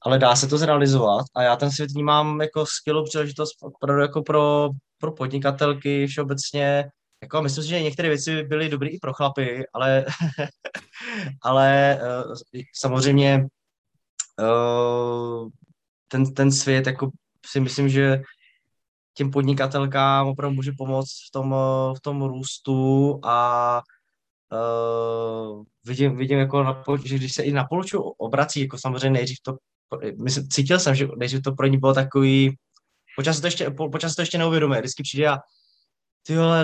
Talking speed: 140 wpm